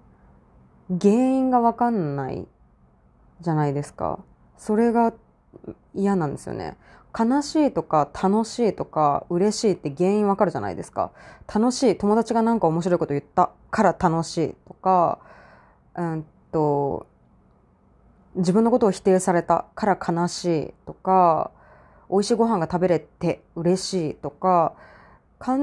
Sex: female